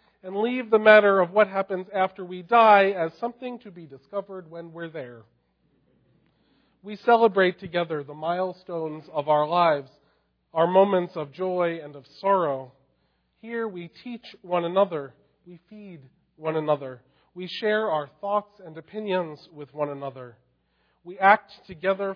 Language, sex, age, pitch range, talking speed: English, male, 40-59, 145-195 Hz, 145 wpm